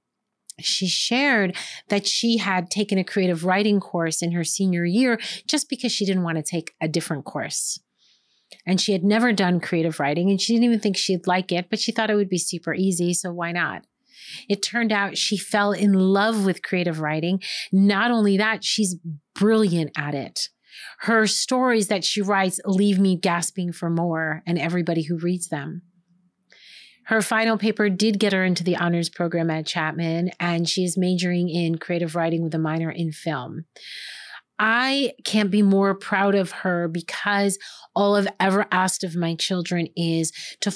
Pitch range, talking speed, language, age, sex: 170-205 Hz, 180 wpm, English, 30-49, female